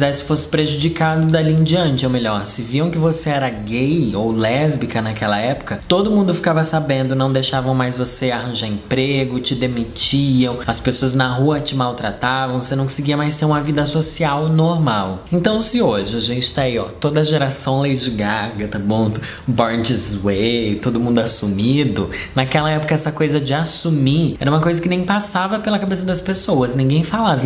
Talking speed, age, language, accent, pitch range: 180 wpm, 20-39, Portuguese, Brazilian, 115-155 Hz